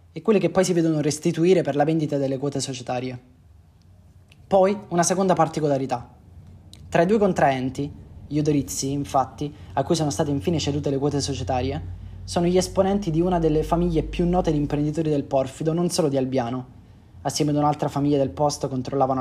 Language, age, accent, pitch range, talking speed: Italian, 20-39, native, 130-160 Hz, 180 wpm